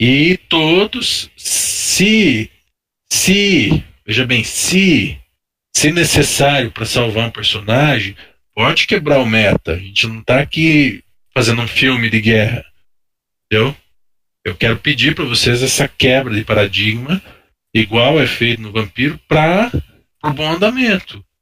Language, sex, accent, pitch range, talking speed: Portuguese, male, Brazilian, 110-150 Hz, 130 wpm